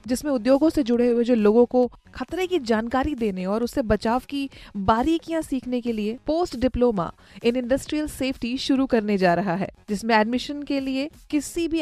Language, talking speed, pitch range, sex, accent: Hindi, 185 wpm, 220-270 Hz, female, native